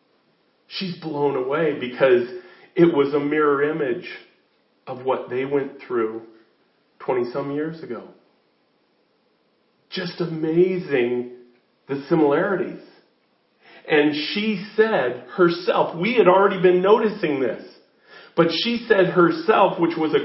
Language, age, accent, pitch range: English, 40-59, American, 150-200 Hz